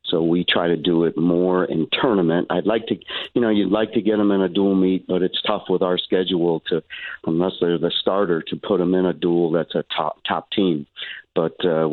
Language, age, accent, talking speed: English, 50-69, American, 235 wpm